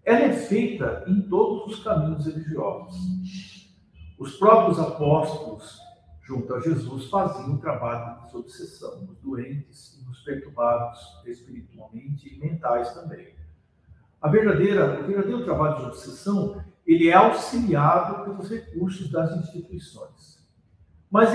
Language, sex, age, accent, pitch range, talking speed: Portuguese, male, 50-69, Brazilian, 125-190 Hz, 120 wpm